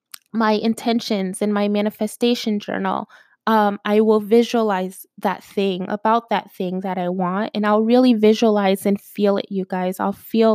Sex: female